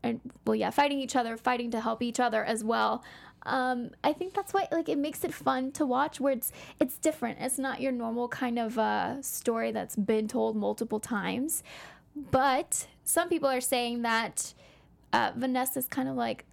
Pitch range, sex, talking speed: 225-280 Hz, female, 195 wpm